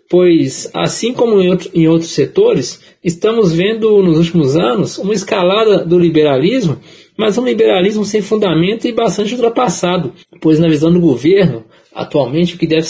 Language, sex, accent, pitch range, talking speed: Portuguese, male, Brazilian, 165-205 Hz, 155 wpm